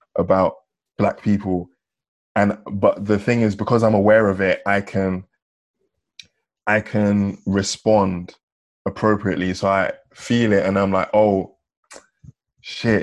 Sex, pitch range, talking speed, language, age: male, 95-110 Hz, 130 wpm, English, 20-39